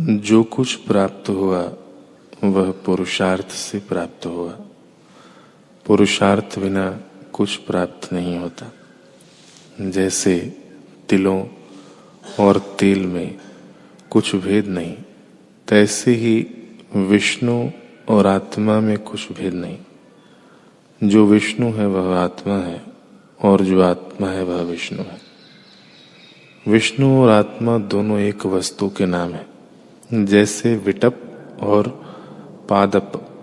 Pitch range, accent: 95-110 Hz, native